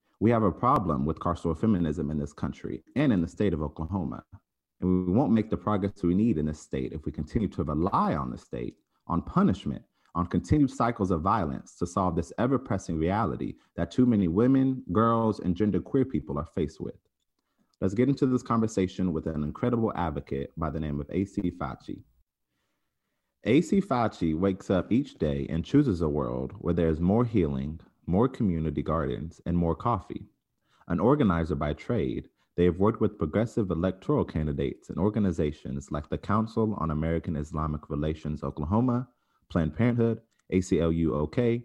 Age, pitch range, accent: 30-49, 80-110 Hz, American